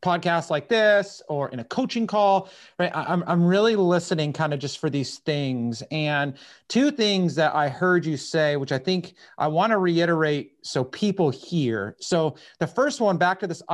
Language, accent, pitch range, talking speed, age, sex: English, American, 155-200 Hz, 190 wpm, 30-49, male